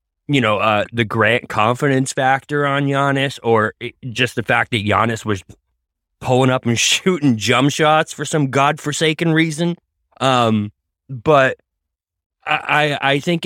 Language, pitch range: English, 110-155 Hz